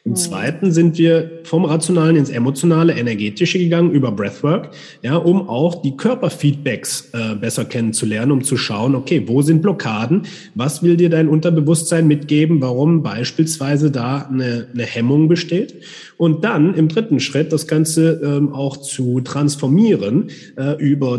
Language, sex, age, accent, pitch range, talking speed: German, male, 30-49, German, 125-165 Hz, 150 wpm